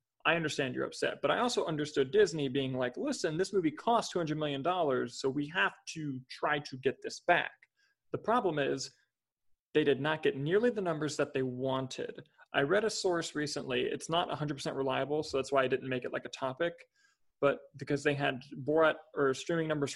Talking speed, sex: 200 wpm, male